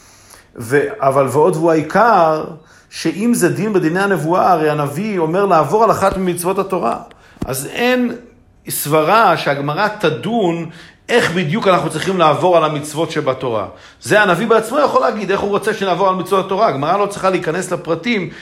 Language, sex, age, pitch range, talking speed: Hebrew, male, 50-69, 155-190 Hz, 155 wpm